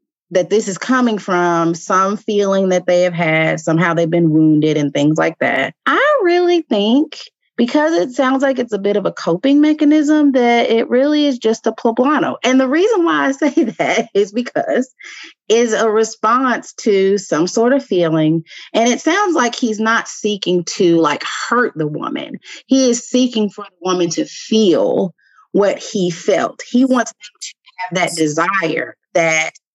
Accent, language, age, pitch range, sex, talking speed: American, English, 30-49, 180-260 Hz, female, 175 wpm